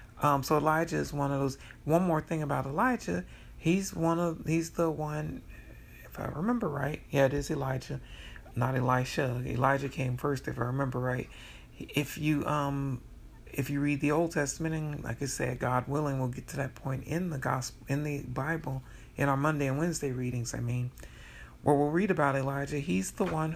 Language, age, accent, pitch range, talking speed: English, 40-59, American, 130-155 Hz, 195 wpm